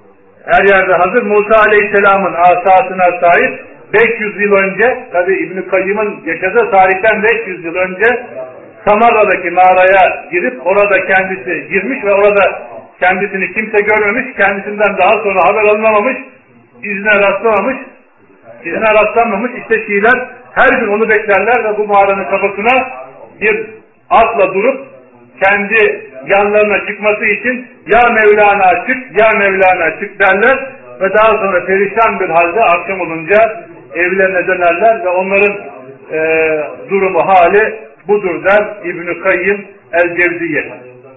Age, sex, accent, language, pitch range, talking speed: 50-69, male, native, Turkish, 175-220 Hz, 120 wpm